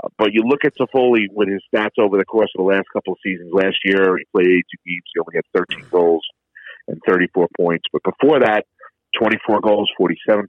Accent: American